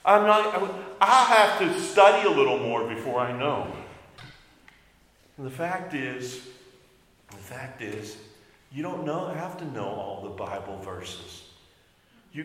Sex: male